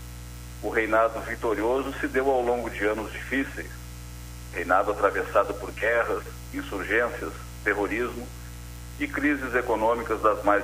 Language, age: Portuguese, 50-69